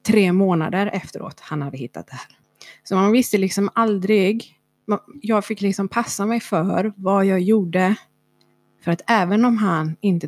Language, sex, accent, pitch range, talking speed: Swedish, female, native, 170-210 Hz, 165 wpm